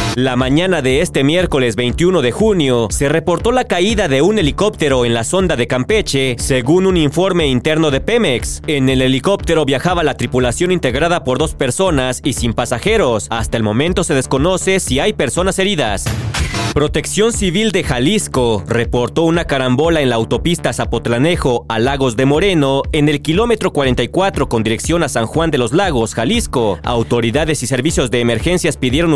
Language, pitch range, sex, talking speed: Spanish, 130-180 Hz, male, 170 wpm